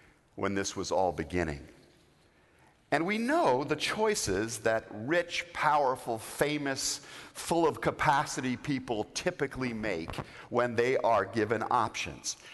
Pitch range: 115-185 Hz